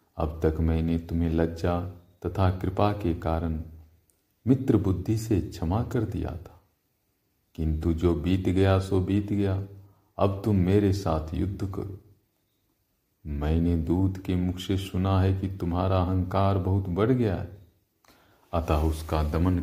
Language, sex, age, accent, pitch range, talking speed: Hindi, male, 40-59, native, 85-100 Hz, 140 wpm